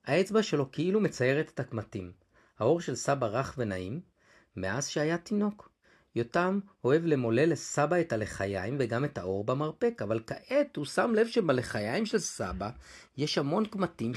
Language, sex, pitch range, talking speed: Hebrew, male, 120-190 Hz, 150 wpm